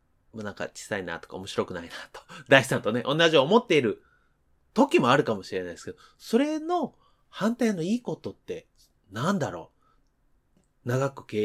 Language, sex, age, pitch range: Japanese, male, 30-49, 125-200 Hz